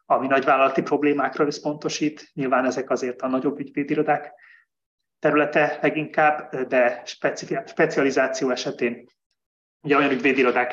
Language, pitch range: Hungarian, 125-150 Hz